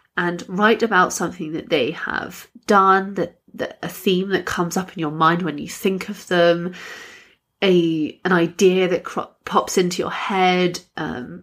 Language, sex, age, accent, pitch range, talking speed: English, female, 30-49, British, 165-215 Hz, 175 wpm